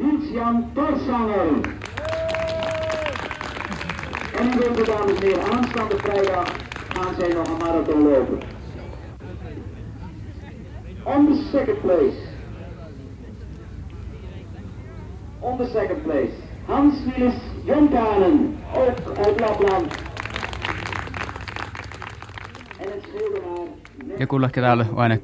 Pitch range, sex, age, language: 95-155 Hz, male, 60-79, Finnish